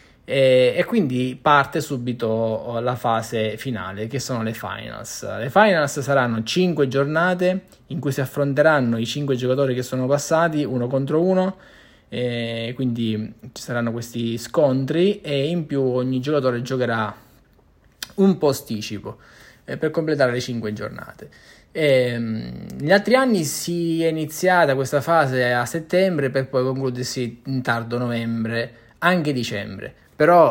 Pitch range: 115-145 Hz